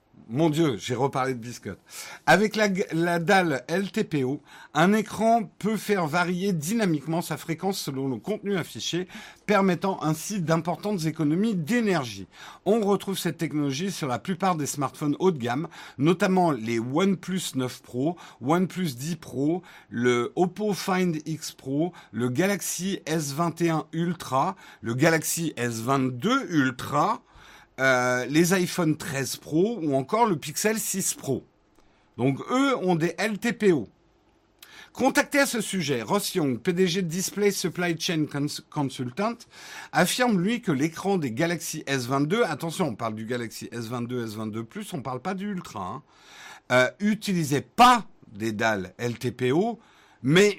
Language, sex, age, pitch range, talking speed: French, male, 50-69, 135-195 Hz, 140 wpm